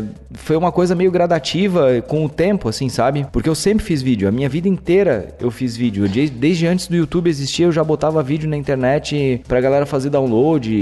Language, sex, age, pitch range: Portuguese, male, 30-49, 120-150 Hz